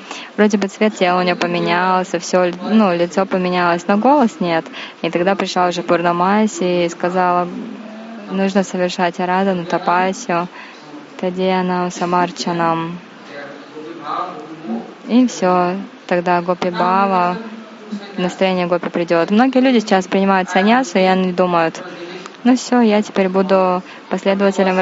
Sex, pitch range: female, 175-210 Hz